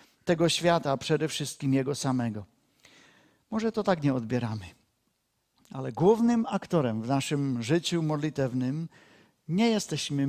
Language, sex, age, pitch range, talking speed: Czech, male, 50-69, 135-200 Hz, 120 wpm